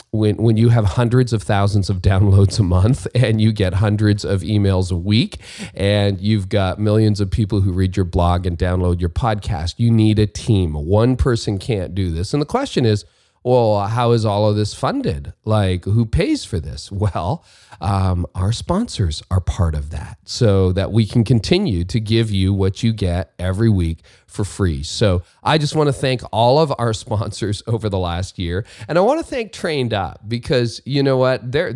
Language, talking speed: English, 200 wpm